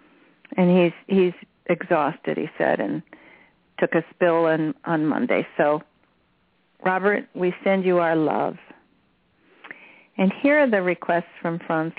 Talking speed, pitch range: 135 wpm, 165-210 Hz